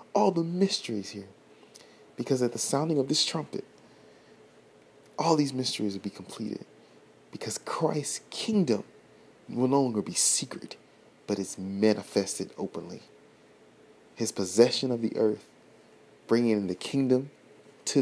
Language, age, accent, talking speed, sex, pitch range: English, 30-49, American, 125 wpm, male, 100-125 Hz